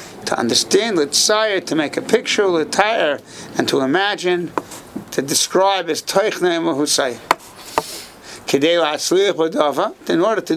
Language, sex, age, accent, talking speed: English, male, 60-79, American, 135 wpm